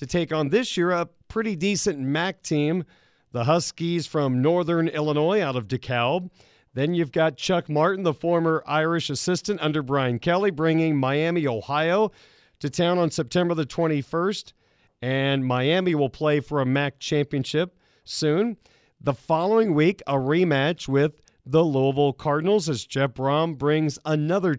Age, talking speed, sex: 40-59, 150 wpm, male